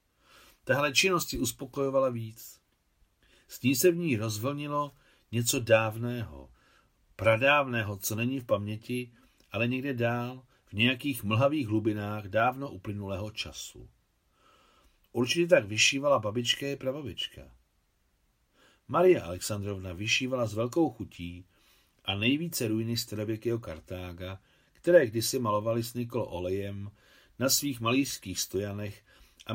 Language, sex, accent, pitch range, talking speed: Czech, male, native, 95-130 Hz, 110 wpm